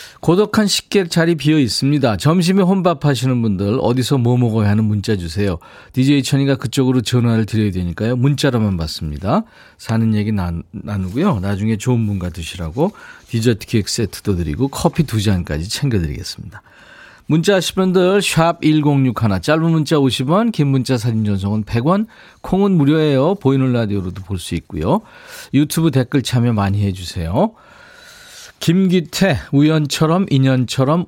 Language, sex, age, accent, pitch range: Korean, male, 40-59, native, 105-160 Hz